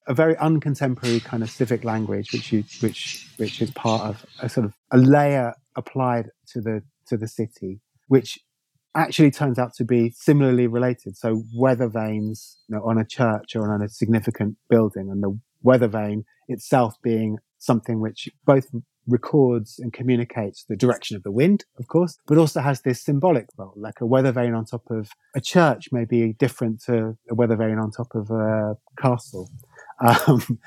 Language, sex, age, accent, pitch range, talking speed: English, male, 30-49, British, 110-140 Hz, 180 wpm